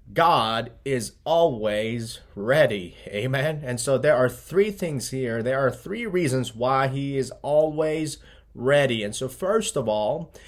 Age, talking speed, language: 30-49, 150 wpm, English